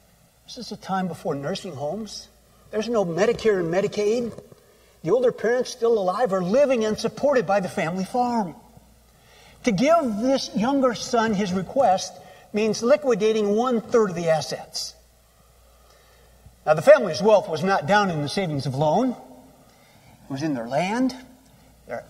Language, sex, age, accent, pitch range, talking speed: English, male, 50-69, American, 165-230 Hz, 150 wpm